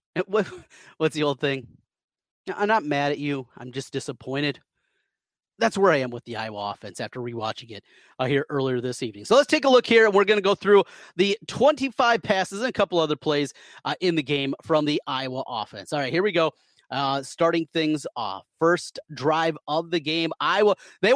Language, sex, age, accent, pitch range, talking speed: English, male, 30-49, American, 140-215 Hz, 205 wpm